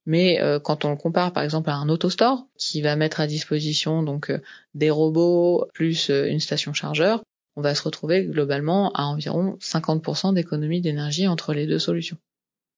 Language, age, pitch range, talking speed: French, 20-39, 150-180 Hz, 170 wpm